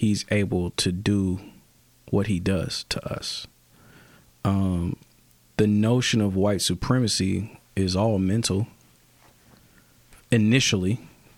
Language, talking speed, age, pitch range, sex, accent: English, 100 wpm, 40-59, 95-115 Hz, male, American